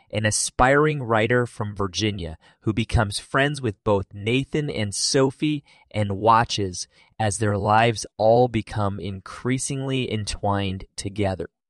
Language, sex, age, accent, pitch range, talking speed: English, male, 30-49, American, 100-130 Hz, 120 wpm